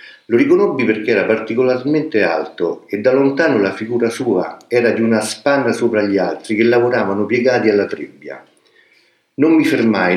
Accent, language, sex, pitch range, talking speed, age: native, Italian, male, 105-140 Hz, 160 wpm, 50-69